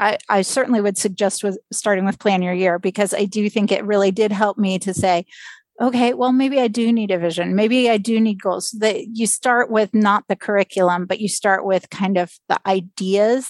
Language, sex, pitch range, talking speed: English, female, 190-245 Hz, 220 wpm